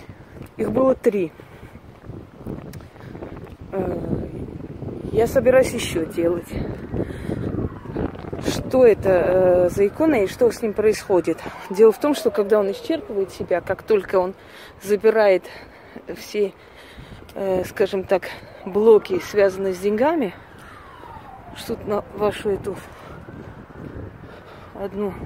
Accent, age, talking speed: native, 30-49, 95 wpm